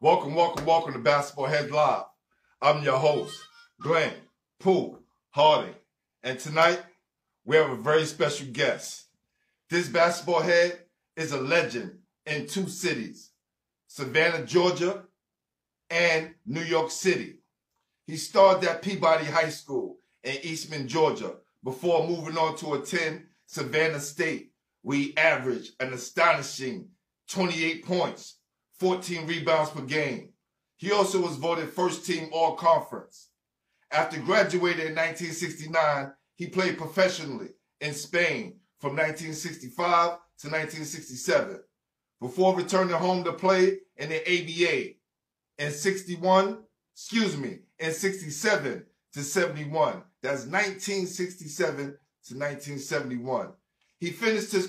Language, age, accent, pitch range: English, 50-69, American, 155-185 Hz